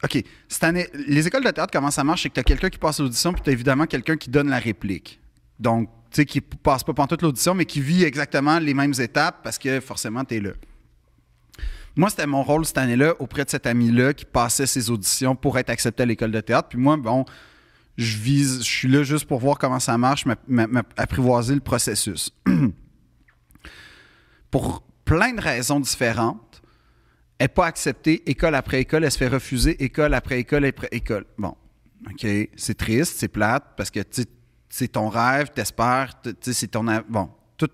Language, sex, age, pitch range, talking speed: French, male, 30-49, 115-145 Hz, 205 wpm